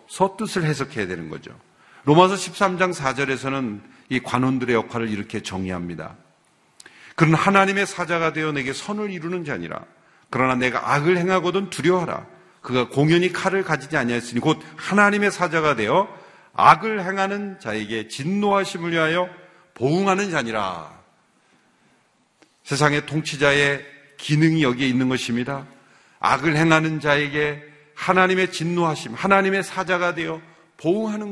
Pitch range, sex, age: 135-190 Hz, male, 40-59